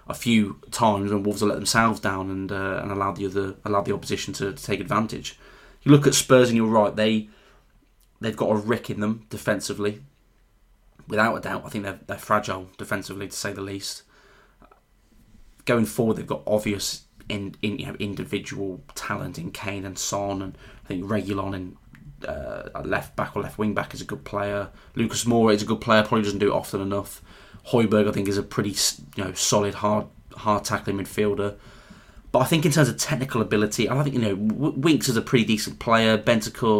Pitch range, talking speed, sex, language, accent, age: 100-110 Hz, 205 wpm, male, English, British, 20-39